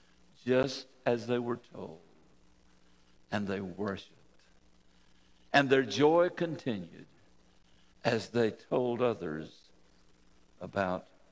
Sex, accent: male, American